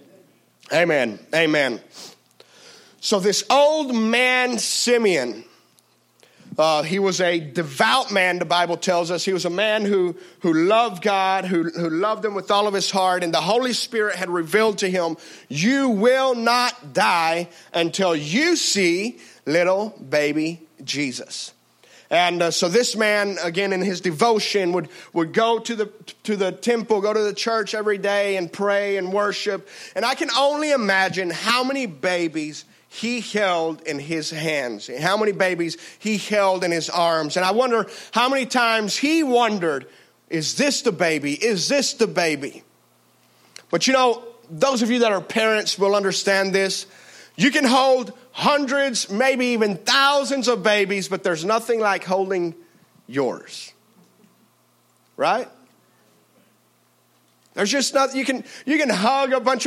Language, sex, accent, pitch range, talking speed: English, male, American, 180-240 Hz, 155 wpm